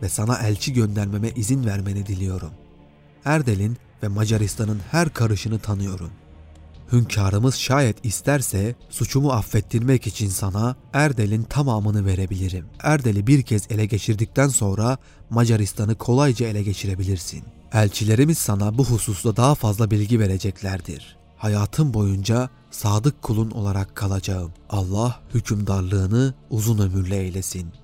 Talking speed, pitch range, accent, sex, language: 110 wpm, 95-120 Hz, native, male, Turkish